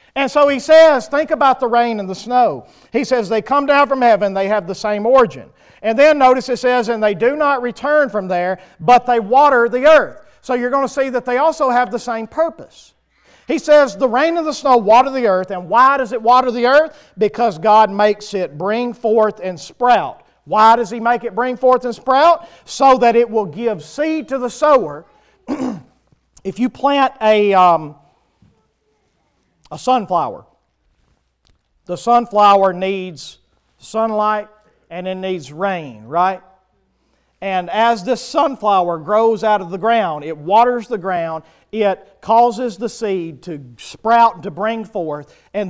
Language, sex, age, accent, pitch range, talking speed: English, male, 40-59, American, 195-255 Hz, 175 wpm